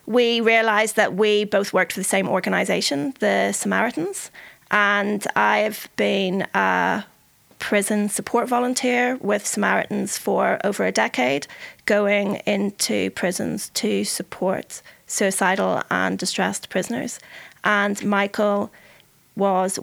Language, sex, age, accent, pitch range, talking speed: English, female, 30-49, British, 195-235 Hz, 110 wpm